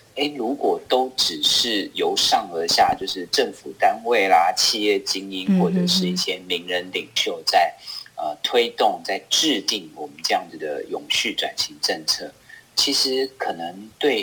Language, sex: Chinese, male